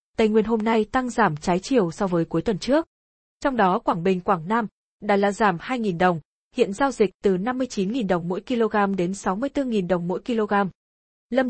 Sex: female